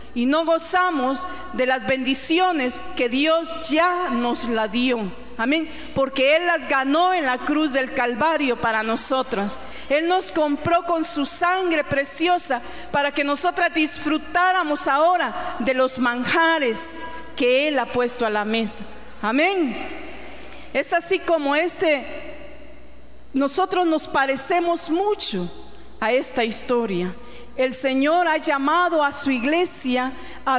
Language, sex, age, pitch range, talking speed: Spanish, female, 40-59, 250-330 Hz, 130 wpm